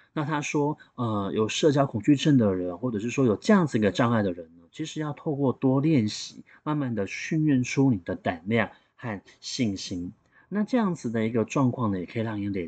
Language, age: Chinese, 30-49